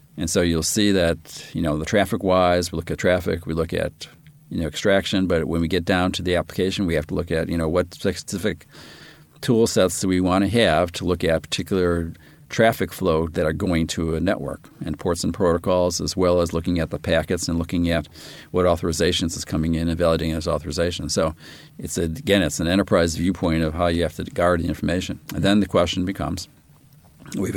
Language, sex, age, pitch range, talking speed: English, male, 50-69, 80-95 Hz, 220 wpm